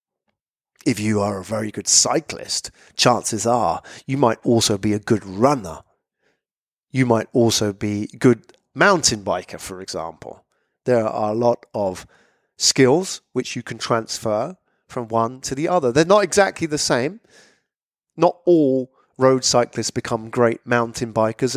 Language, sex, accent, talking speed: English, male, British, 145 wpm